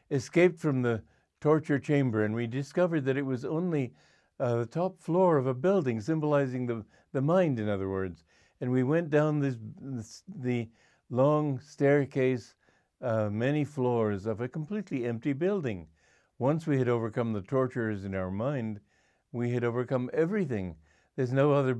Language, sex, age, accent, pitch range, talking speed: English, male, 60-79, American, 110-145 Hz, 160 wpm